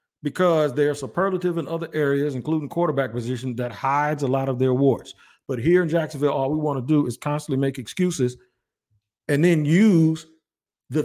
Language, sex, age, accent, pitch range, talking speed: English, male, 50-69, American, 145-185 Hz, 180 wpm